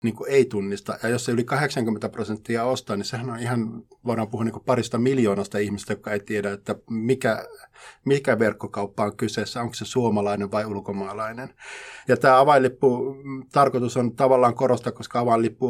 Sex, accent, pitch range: male, native, 105-125 Hz